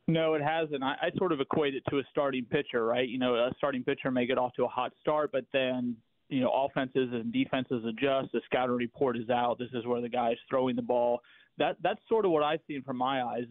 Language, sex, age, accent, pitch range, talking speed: English, male, 30-49, American, 125-145 Hz, 260 wpm